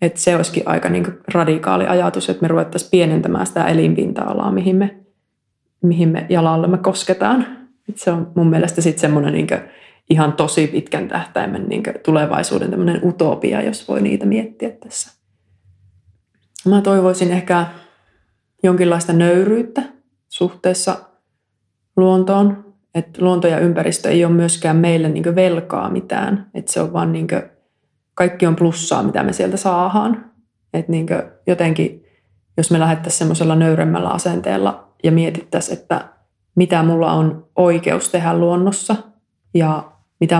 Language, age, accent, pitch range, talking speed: Finnish, 20-39, native, 130-180 Hz, 130 wpm